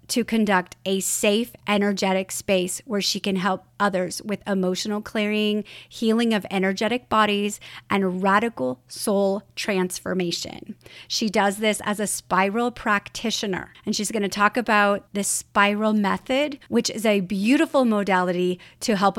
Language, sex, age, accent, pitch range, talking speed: English, female, 30-49, American, 185-215 Hz, 140 wpm